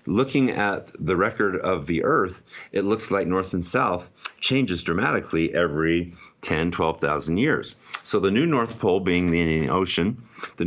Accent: American